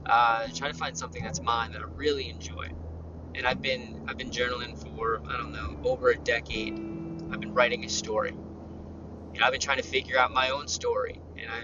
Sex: male